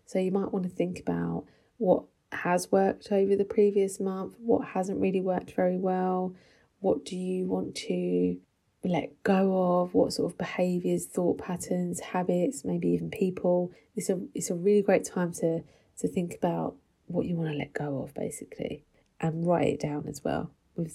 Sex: female